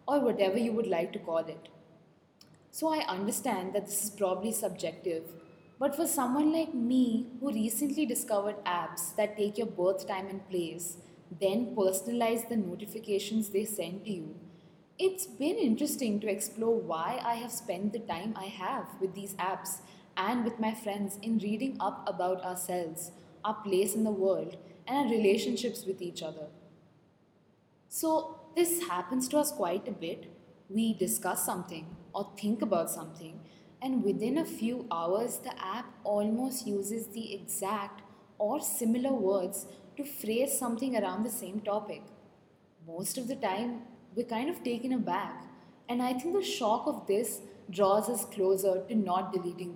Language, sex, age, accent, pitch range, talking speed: English, female, 10-29, Indian, 185-240 Hz, 160 wpm